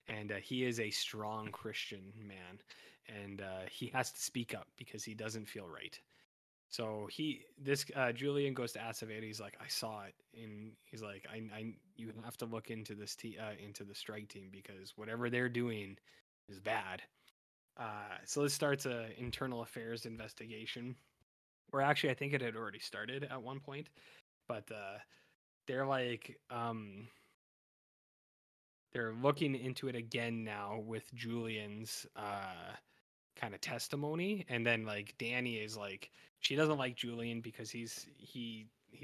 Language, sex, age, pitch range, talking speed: English, male, 20-39, 110-130 Hz, 160 wpm